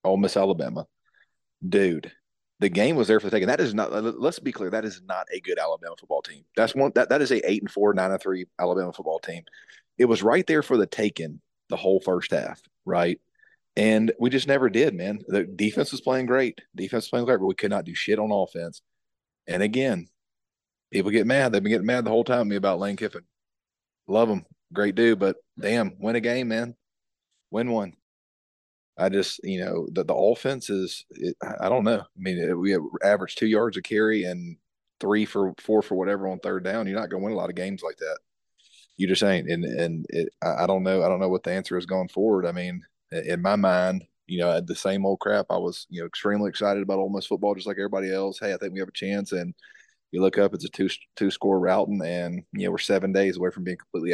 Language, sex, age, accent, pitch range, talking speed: English, male, 30-49, American, 90-110 Hz, 240 wpm